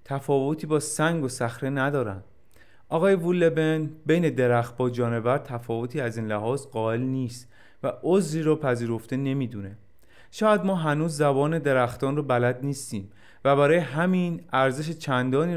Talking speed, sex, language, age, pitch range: 140 wpm, male, Persian, 30-49, 120-155 Hz